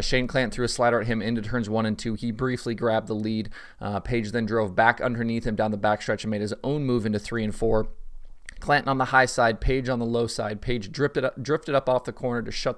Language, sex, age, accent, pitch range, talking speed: English, male, 30-49, American, 105-120 Hz, 260 wpm